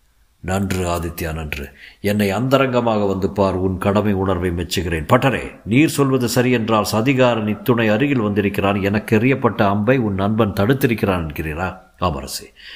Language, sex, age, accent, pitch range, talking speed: Tamil, male, 50-69, native, 95-125 Hz, 120 wpm